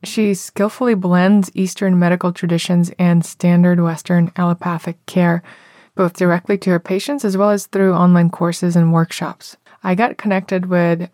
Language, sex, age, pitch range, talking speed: English, female, 20-39, 170-185 Hz, 150 wpm